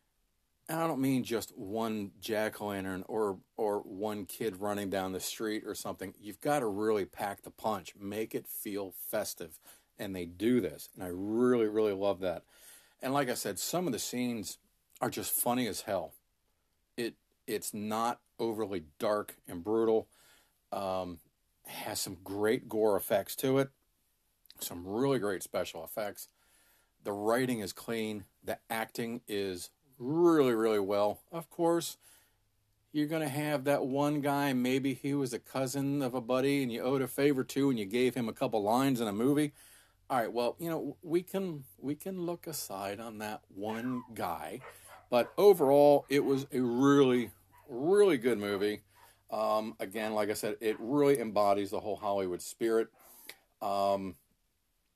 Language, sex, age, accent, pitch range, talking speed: English, male, 40-59, American, 100-135 Hz, 165 wpm